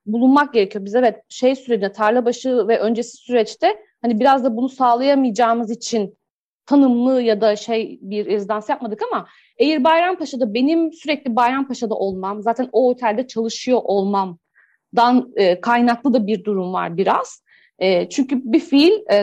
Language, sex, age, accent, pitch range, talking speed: Turkish, female, 40-59, native, 210-275 Hz, 150 wpm